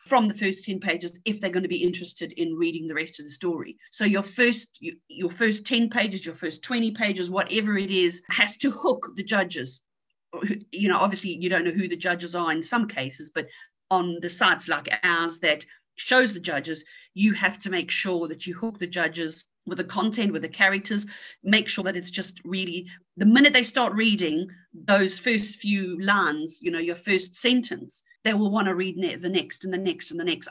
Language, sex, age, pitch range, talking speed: English, female, 40-59, 175-220 Hz, 215 wpm